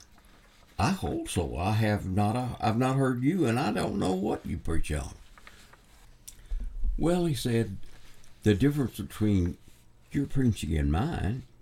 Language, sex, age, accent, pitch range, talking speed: English, male, 60-79, American, 85-120 Hz, 145 wpm